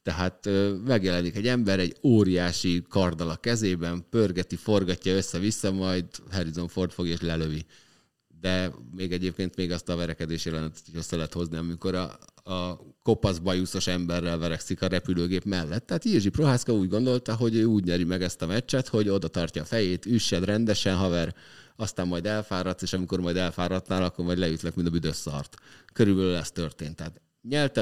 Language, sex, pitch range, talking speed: Hungarian, male, 85-105 Hz, 165 wpm